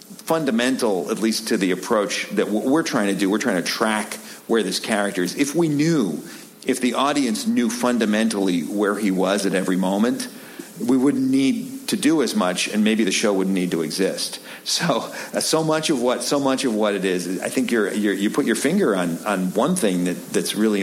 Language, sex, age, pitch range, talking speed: English, male, 50-69, 95-155 Hz, 205 wpm